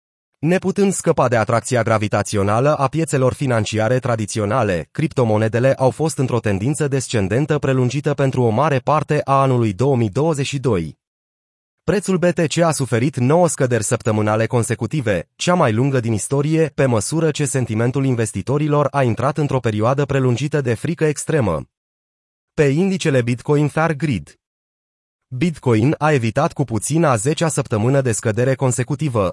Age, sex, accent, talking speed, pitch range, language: 30-49, male, native, 135 wpm, 115-150 Hz, Romanian